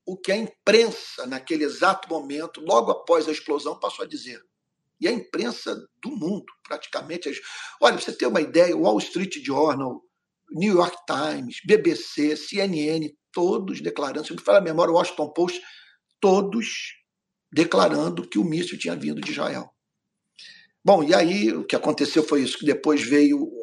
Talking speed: 170 wpm